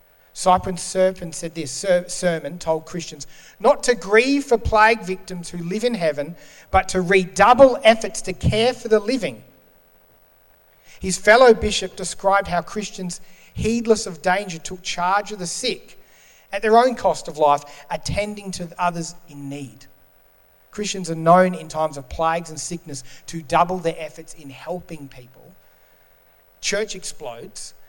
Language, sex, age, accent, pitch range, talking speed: English, male, 40-59, Australian, 110-180 Hz, 150 wpm